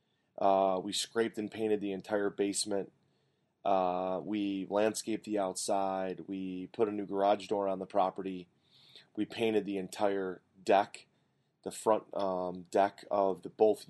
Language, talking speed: English, 145 wpm